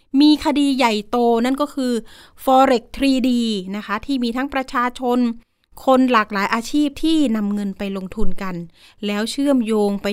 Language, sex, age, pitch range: Thai, female, 30-49, 210-270 Hz